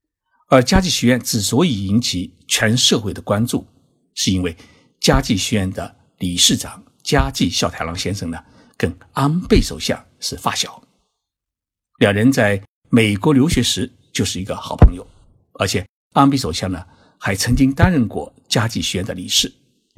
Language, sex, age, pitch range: Chinese, male, 60-79, 90-115 Hz